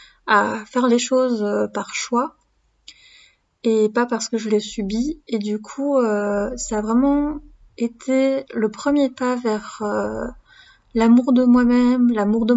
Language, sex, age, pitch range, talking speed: French, female, 20-39, 205-250 Hz, 150 wpm